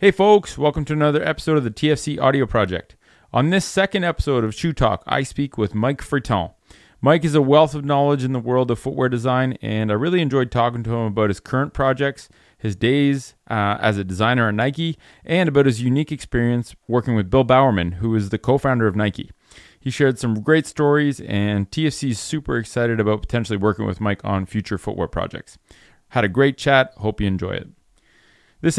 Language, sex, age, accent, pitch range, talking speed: English, male, 30-49, American, 105-140 Hz, 200 wpm